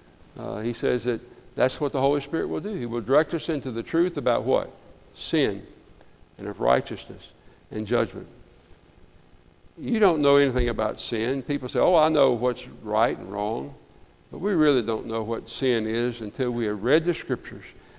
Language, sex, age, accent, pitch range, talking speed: English, male, 60-79, American, 120-165 Hz, 185 wpm